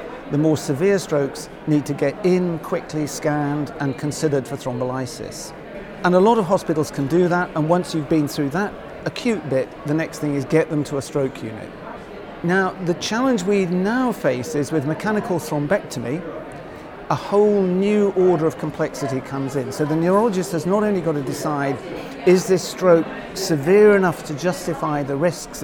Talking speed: 180 wpm